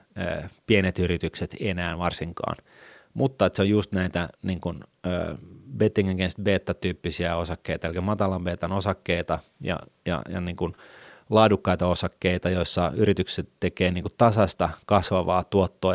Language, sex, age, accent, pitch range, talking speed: Finnish, male, 30-49, native, 90-100 Hz, 130 wpm